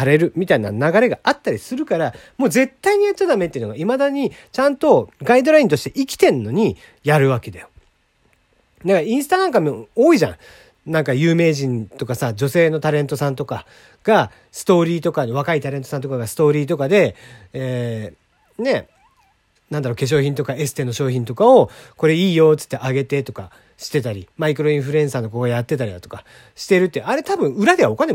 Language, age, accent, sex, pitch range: Japanese, 40-59, native, male, 135-225 Hz